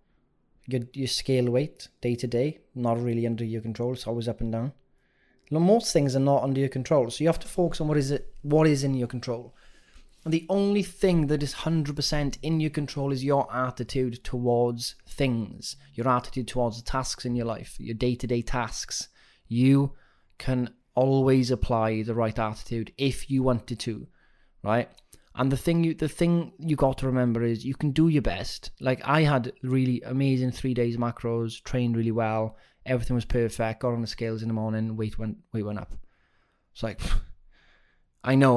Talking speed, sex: 195 wpm, male